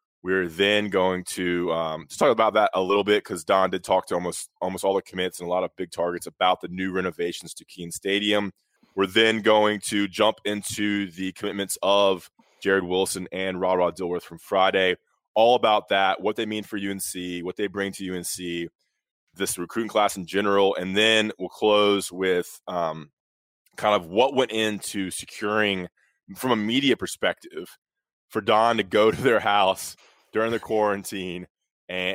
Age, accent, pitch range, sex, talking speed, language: 20-39, American, 90-105 Hz, male, 180 wpm, English